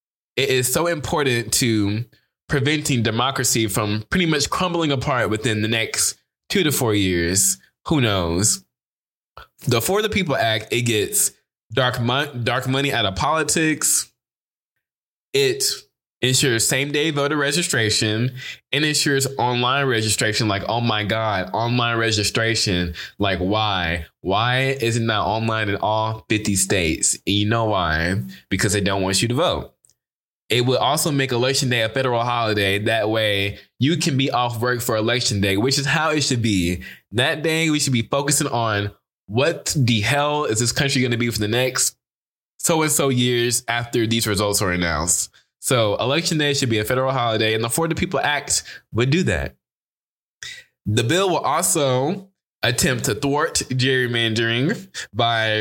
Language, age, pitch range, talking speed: English, 20-39, 110-140 Hz, 160 wpm